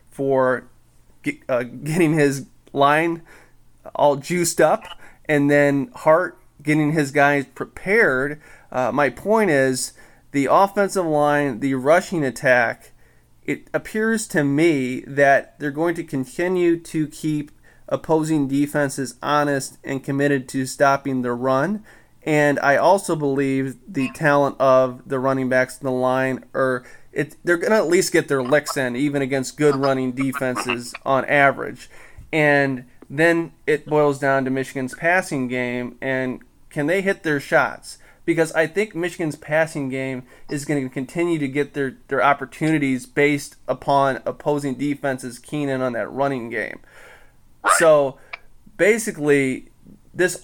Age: 30-49